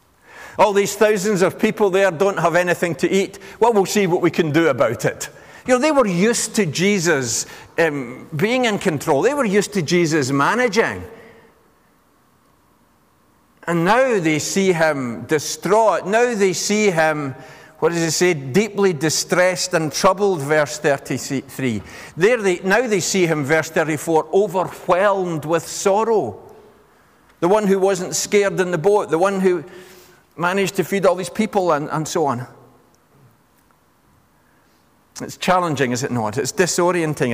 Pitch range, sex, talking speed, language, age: 150-195 Hz, male, 155 wpm, English, 50-69